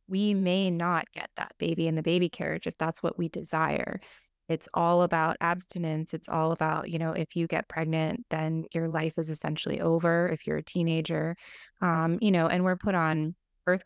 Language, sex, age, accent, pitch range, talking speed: English, female, 20-39, American, 155-180 Hz, 200 wpm